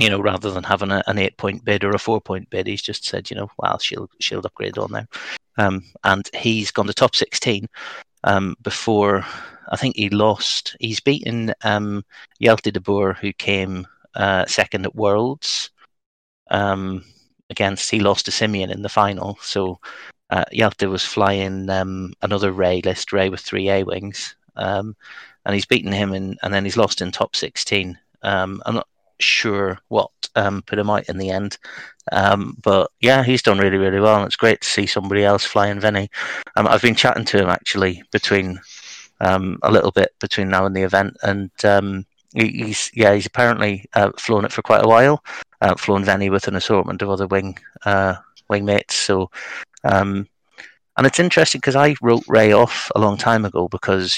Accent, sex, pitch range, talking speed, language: British, male, 95-105 Hz, 190 wpm, English